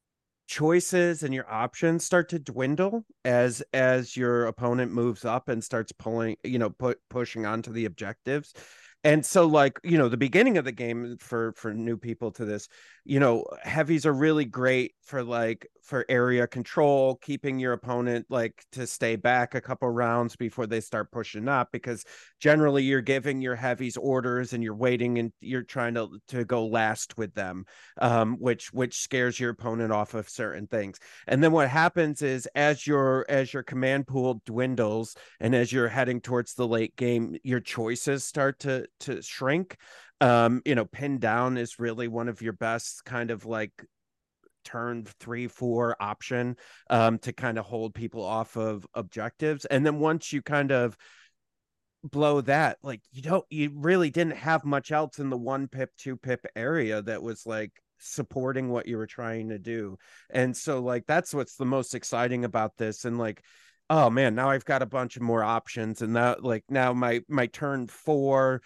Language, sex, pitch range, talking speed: English, male, 115-135 Hz, 185 wpm